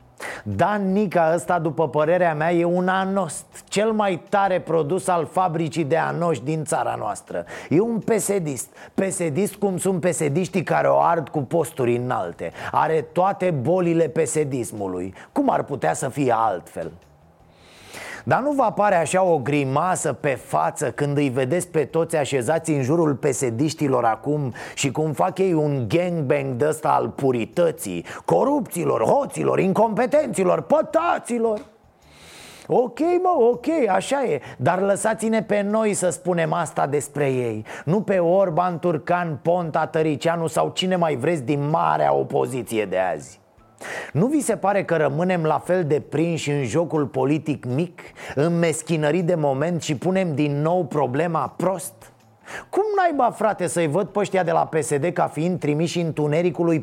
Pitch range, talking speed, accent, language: 150-190 Hz, 150 wpm, native, Romanian